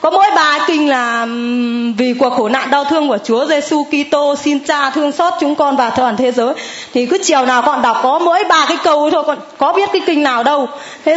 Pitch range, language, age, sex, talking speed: 250-315 Hz, Vietnamese, 20-39, female, 240 wpm